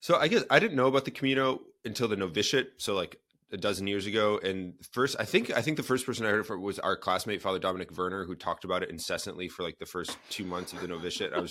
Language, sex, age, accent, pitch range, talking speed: English, male, 30-49, American, 90-115 Hz, 270 wpm